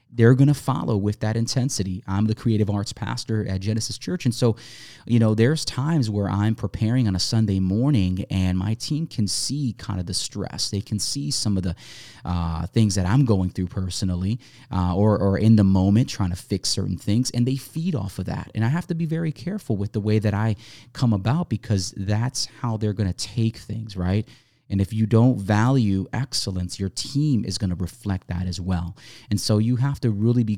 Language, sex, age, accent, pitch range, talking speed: English, male, 30-49, American, 95-120 Hz, 220 wpm